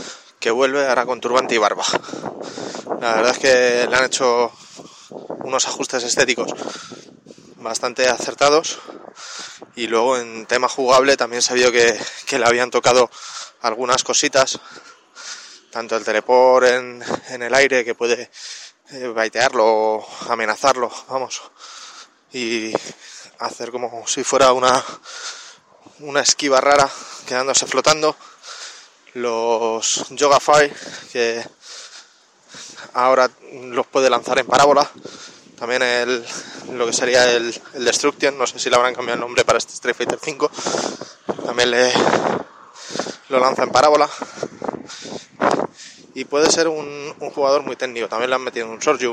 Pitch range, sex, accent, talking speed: 120-140 Hz, male, Spanish, 135 wpm